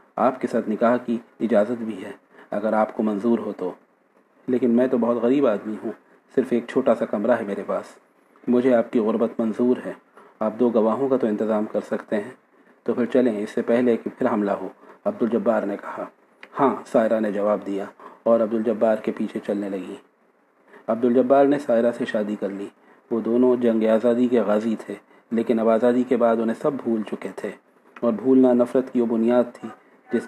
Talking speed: 200 wpm